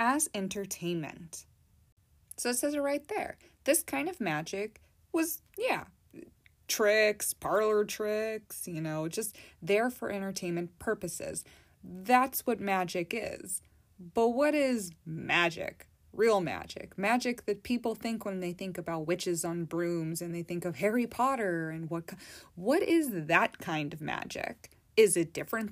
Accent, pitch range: American, 175-255 Hz